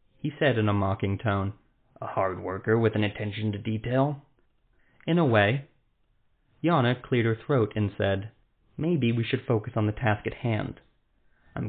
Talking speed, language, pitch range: 170 wpm, English, 100-130 Hz